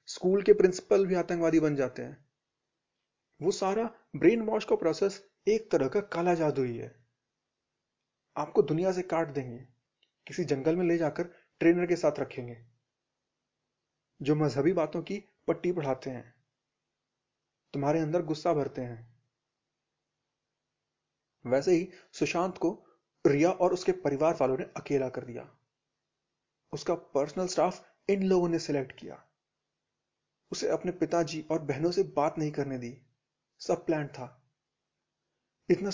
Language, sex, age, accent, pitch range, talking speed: Hindi, male, 30-49, native, 135-180 Hz, 135 wpm